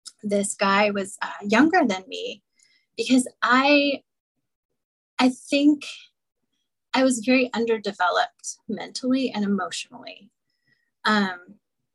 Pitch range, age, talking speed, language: 200-255 Hz, 20-39, 95 wpm, English